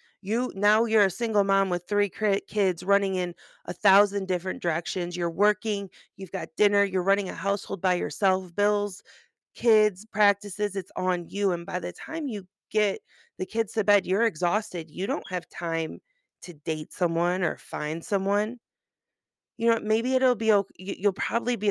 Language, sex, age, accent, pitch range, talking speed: English, female, 30-49, American, 180-220 Hz, 170 wpm